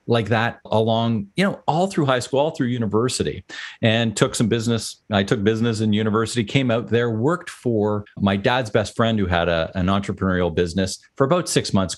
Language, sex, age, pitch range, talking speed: English, male, 40-59, 100-125 Hz, 200 wpm